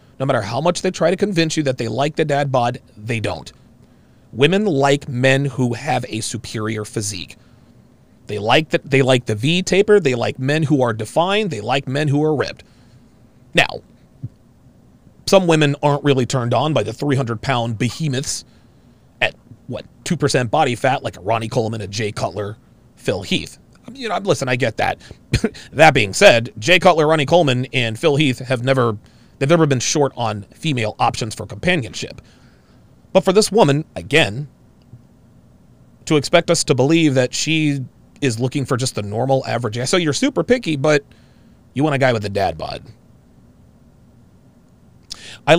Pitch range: 120-160 Hz